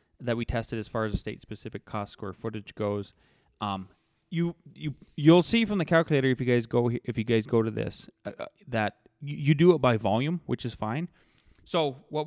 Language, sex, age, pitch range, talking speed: English, male, 20-39, 110-150 Hz, 205 wpm